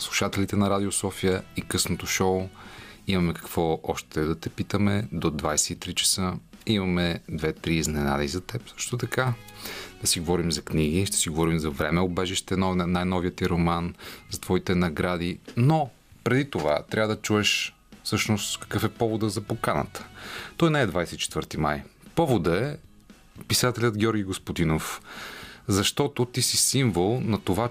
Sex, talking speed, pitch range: male, 145 wpm, 90-110 Hz